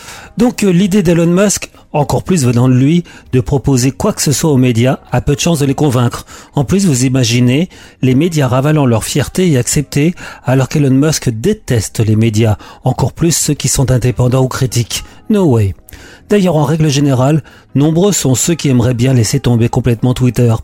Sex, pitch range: male, 125-155 Hz